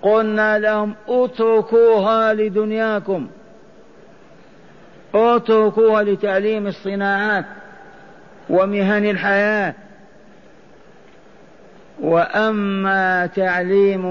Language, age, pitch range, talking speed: Arabic, 50-69, 175-205 Hz, 45 wpm